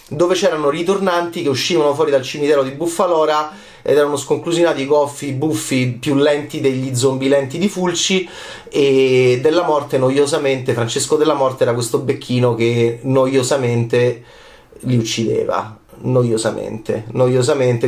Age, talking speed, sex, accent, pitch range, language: 30-49, 130 wpm, male, native, 125-155 Hz, Italian